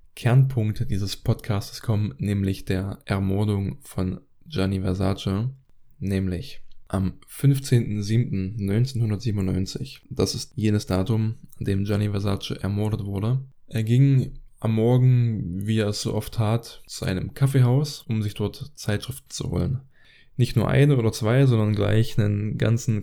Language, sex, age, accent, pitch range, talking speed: German, male, 10-29, German, 100-120 Hz, 135 wpm